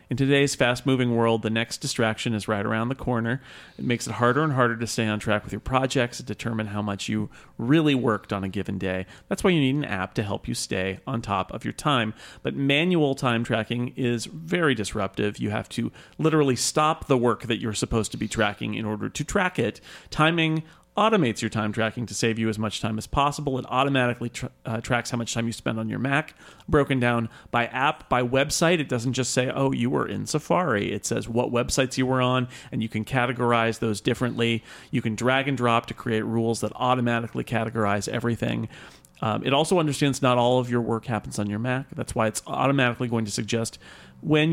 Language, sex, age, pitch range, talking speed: English, male, 40-59, 110-135 Hz, 220 wpm